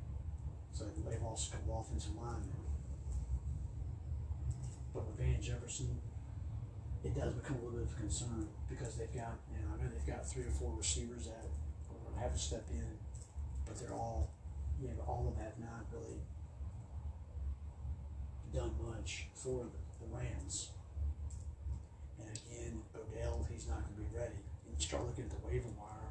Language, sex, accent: English, male, American